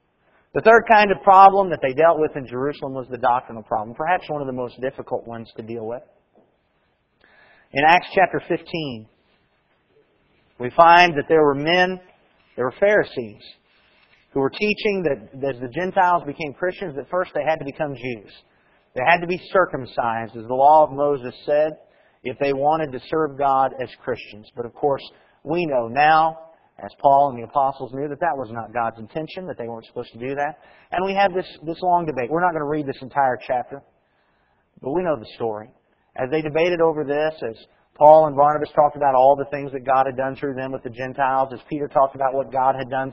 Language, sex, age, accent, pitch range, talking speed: English, male, 40-59, American, 130-160 Hz, 205 wpm